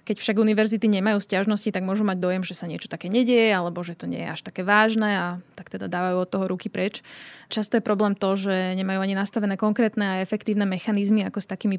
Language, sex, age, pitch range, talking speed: Slovak, female, 20-39, 185-210 Hz, 230 wpm